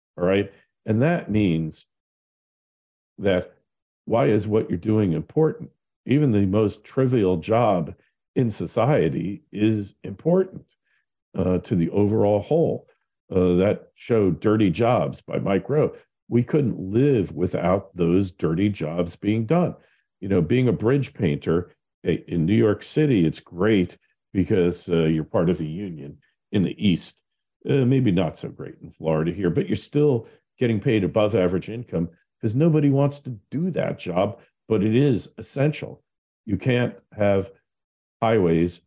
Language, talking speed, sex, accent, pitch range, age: English, 150 wpm, male, American, 90-120 Hz, 50-69